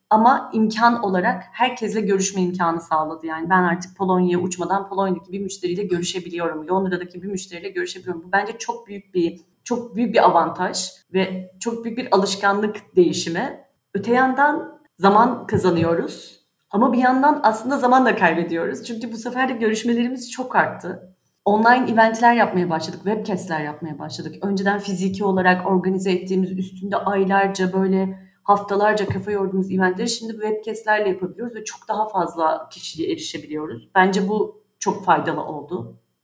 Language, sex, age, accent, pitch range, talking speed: Turkish, female, 30-49, native, 180-215 Hz, 140 wpm